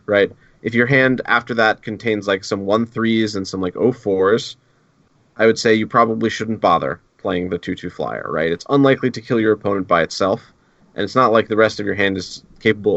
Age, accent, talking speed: 30-49, American, 225 wpm